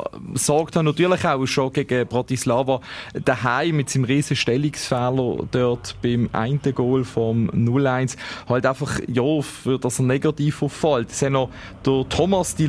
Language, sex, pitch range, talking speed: German, male, 130-160 Hz, 145 wpm